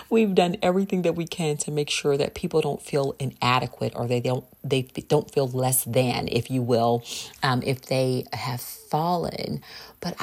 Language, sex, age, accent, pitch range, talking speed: English, female, 40-59, American, 130-170 Hz, 180 wpm